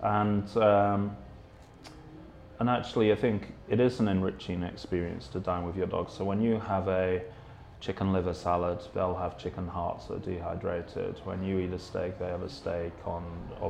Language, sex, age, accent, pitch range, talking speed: English, male, 30-49, British, 90-105 Hz, 185 wpm